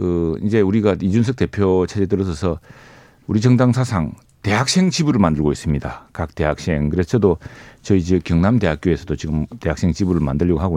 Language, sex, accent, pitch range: Korean, male, native, 85-120 Hz